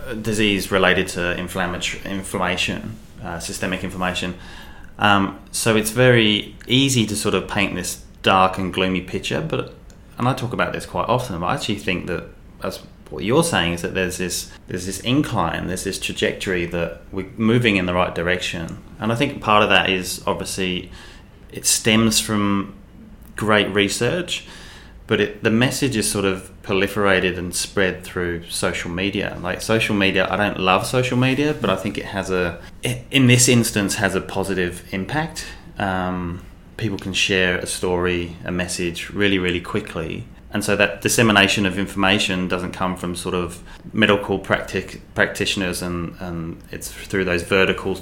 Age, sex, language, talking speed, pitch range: 20-39, male, English, 165 wpm, 90-105 Hz